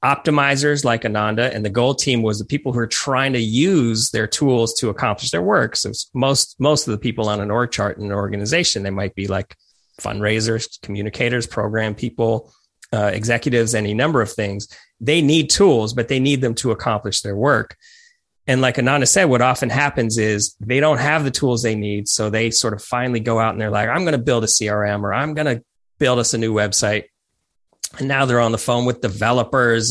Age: 30-49